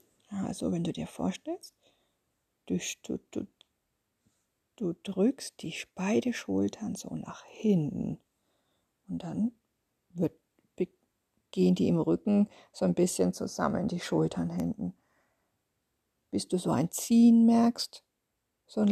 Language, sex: German, female